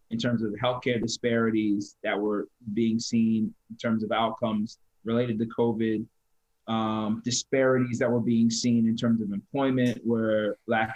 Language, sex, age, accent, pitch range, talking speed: English, male, 20-39, American, 110-120 Hz, 155 wpm